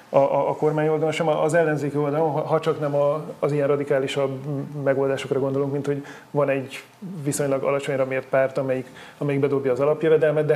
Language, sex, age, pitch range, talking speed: Hungarian, male, 30-49, 140-160 Hz, 180 wpm